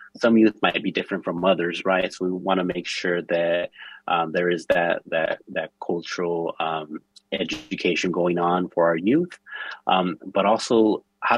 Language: English